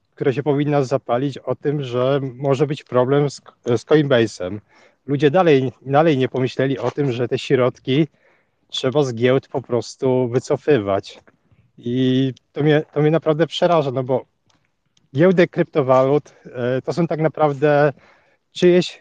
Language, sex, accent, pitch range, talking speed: Polish, male, native, 130-165 Hz, 140 wpm